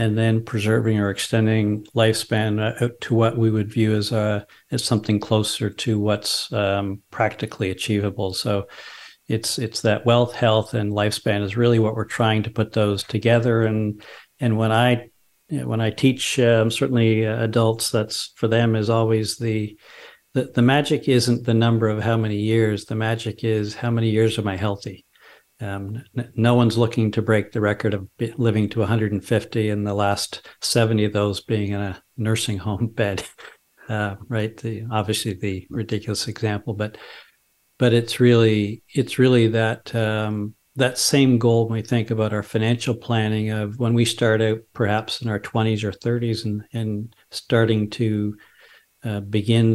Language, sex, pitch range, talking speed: English, male, 105-115 Hz, 170 wpm